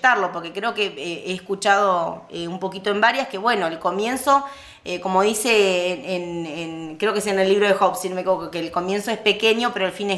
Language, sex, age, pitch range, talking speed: Spanish, female, 20-39, 175-225 Hz, 205 wpm